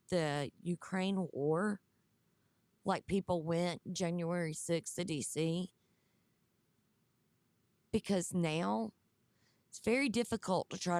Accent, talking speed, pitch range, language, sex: American, 95 wpm, 165-210 Hz, English, female